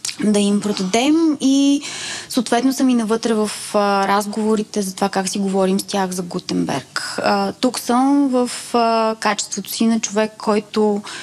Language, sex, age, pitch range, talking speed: Bulgarian, female, 20-39, 190-225 Hz, 160 wpm